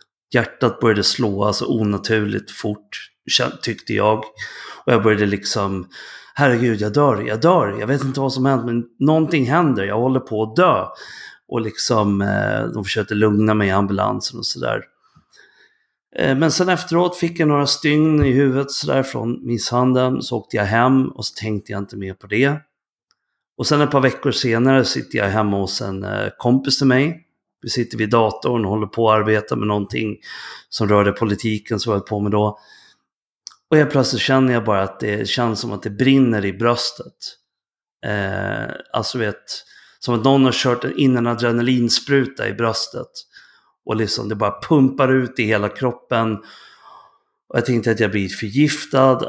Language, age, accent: Swedish, 30-49, native